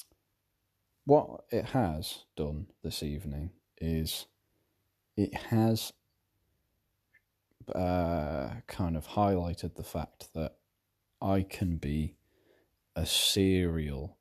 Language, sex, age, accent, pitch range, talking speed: English, male, 30-49, British, 75-100 Hz, 90 wpm